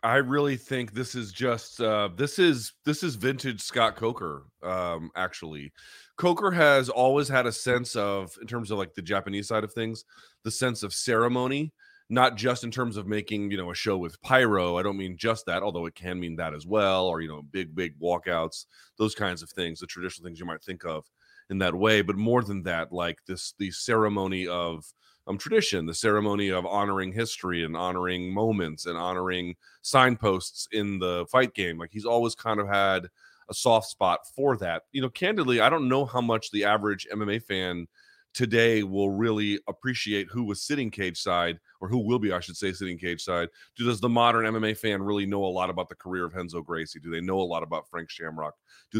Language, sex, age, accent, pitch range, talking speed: English, male, 30-49, American, 90-115 Hz, 210 wpm